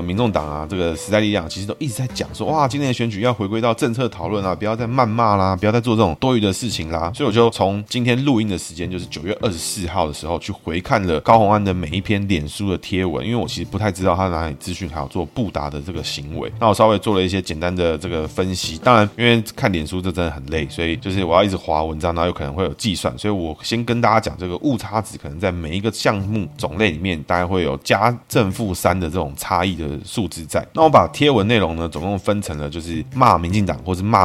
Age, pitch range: 20-39, 85-110 Hz